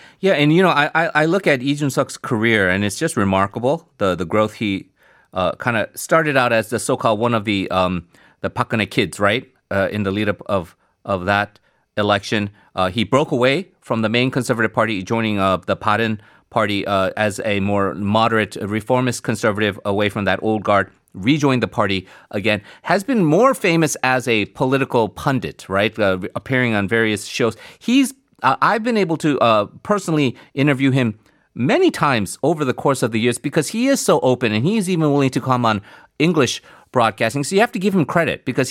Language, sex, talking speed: English, male, 195 wpm